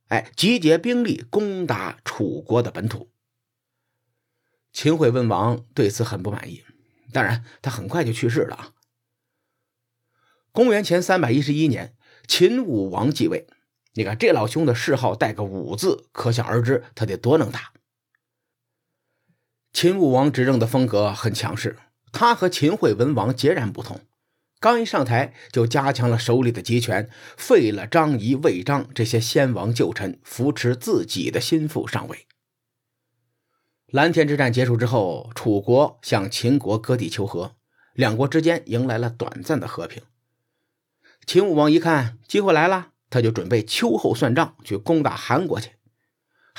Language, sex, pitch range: Chinese, male, 115-145 Hz